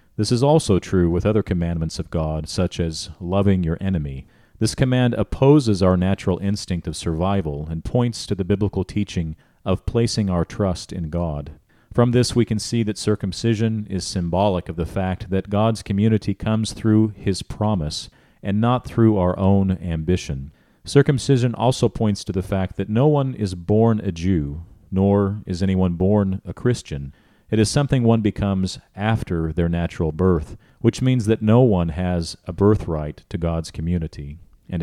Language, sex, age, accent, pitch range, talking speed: English, male, 40-59, American, 90-110 Hz, 170 wpm